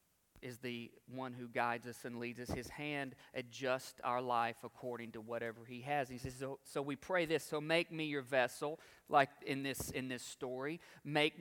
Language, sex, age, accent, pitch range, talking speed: English, male, 40-59, American, 130-160 Hz, 205 wpm